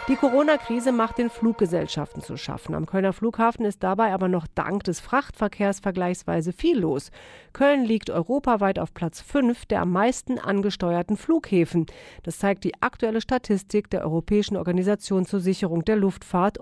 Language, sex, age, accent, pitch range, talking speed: German, female, 40-59, German, 185-240 Hz, 155 wpm